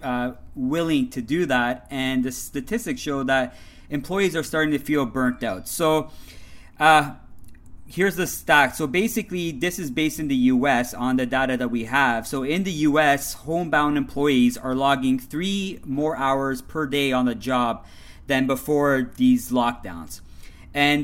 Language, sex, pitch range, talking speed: English, male, 130-155 Hz, 165 wpm